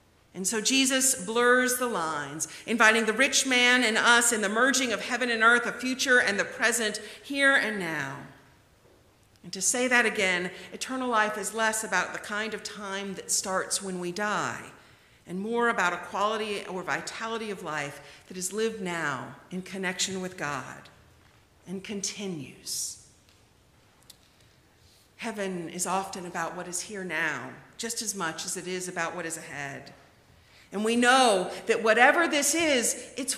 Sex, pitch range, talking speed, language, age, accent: female, 175-240 Hz, 165 wpm, English, 50-69, American